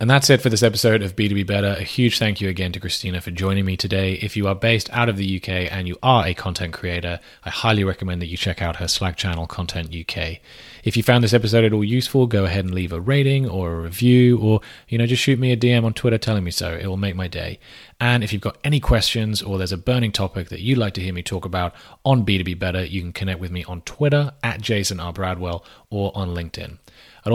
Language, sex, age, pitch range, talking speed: English, male, 30-49, 90-110 Hz, 260 wpm